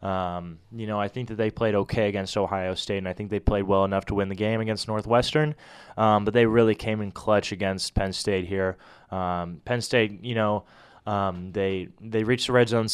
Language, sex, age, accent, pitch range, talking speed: English, male, 20-39, American, 95-110 Hz, 225 wpm